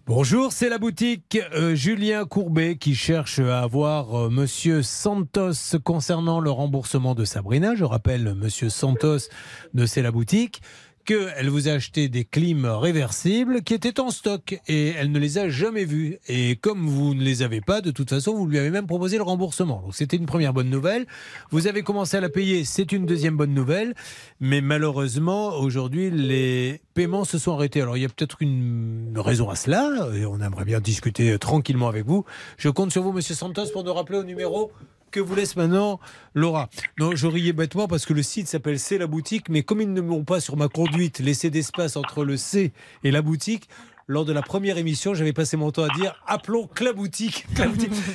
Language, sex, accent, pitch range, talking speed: French, male, French, 140-195 Hz, 210 wpm